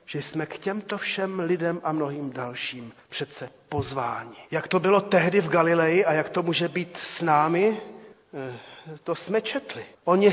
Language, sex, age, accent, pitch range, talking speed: Czech, male, 40-59, native, 135-185 Hz, 165 wpm